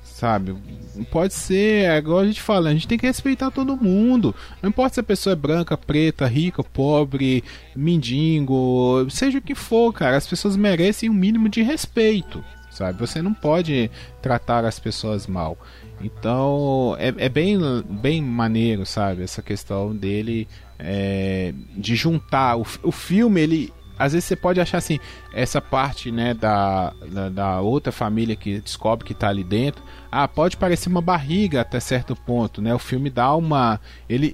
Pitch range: 120-195 Hz